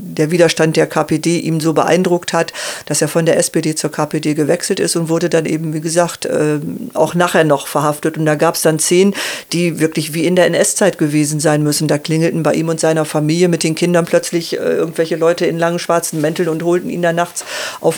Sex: female